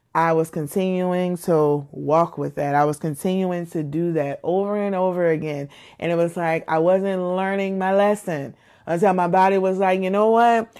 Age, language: 30-49, English